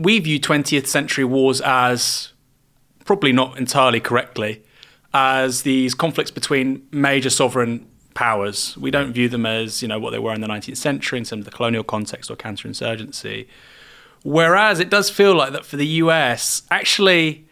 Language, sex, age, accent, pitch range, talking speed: English, male, 30-49, British, 125-155 Hz, 170 wpm